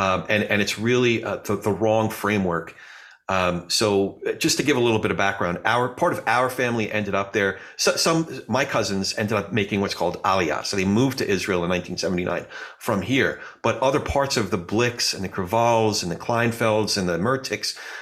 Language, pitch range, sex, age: English, 100-120 Hz, male, 40-59